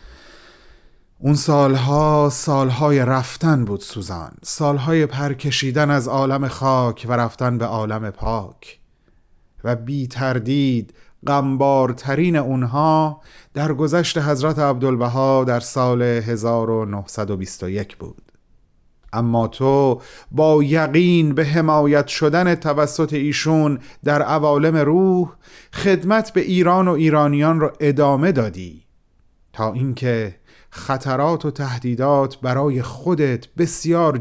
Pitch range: 125-155 Hz